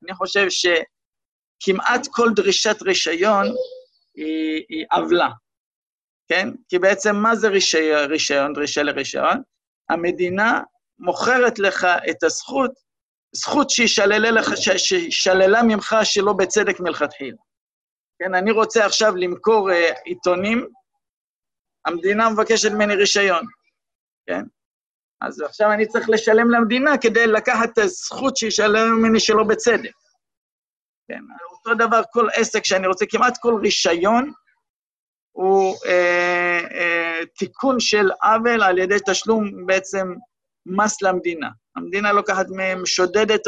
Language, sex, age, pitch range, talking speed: Hebrew, male, 50-69, 180-230 Hz, 115 wpm